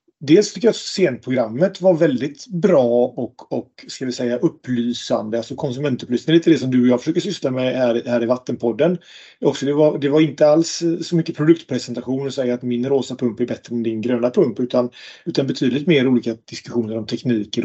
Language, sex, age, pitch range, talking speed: Swedish, male, 30-49, 120-150 Hz, 205 wpm